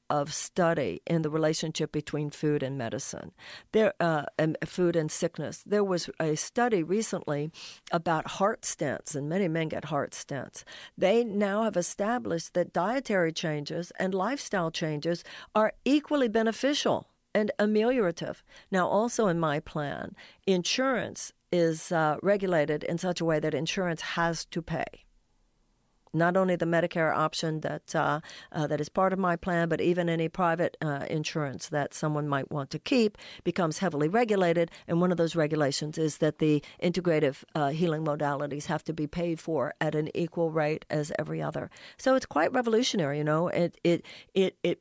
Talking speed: 165 wpm